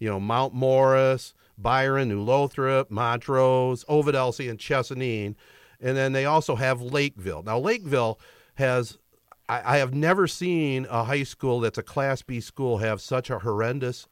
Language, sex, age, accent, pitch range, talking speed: English, male, 50-69, American, 115-140 Hz, 155 wpm